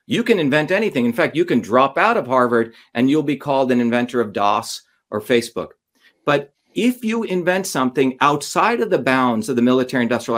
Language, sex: English, male